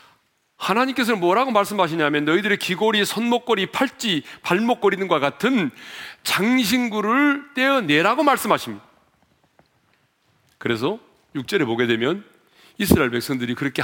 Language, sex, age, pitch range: Korean, male, 40-59, 140-225 Hz